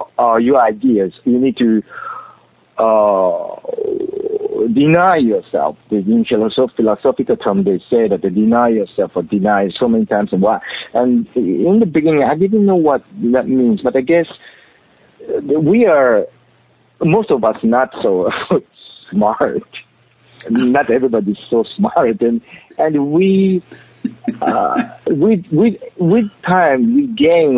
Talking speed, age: 135 wpm, 50-69